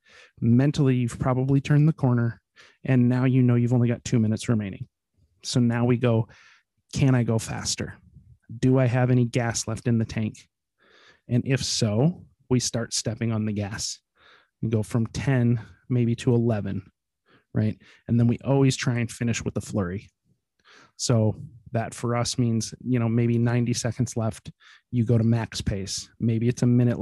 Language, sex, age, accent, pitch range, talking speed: English, male, 30-49, American, 110-125 Hz, 180 wpm